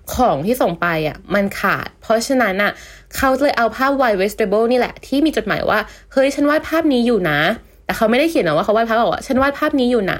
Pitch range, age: 215-285 Hz, 20-39